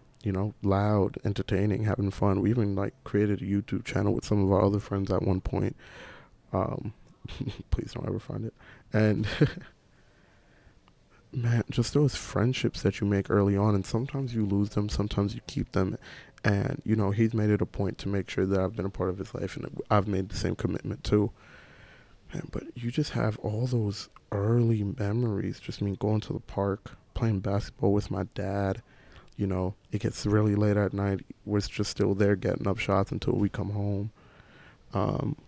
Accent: American